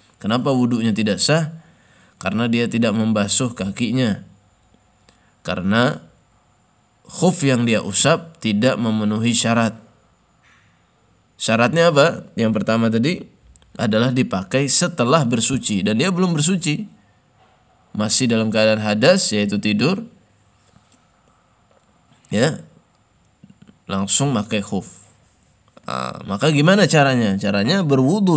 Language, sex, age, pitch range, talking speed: Indonesian, male, 20-39, 105-135 Hz, 95 wpm